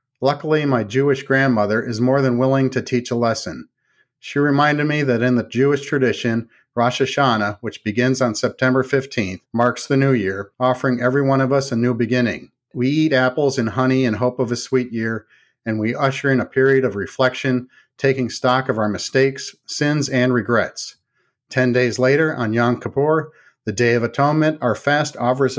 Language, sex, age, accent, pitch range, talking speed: English, male, 50-69, American, 120-135 Hz, 185 wpm